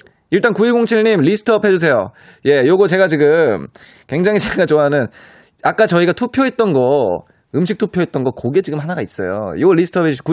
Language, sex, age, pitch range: Korean, male, 20-39, 115-185 Hz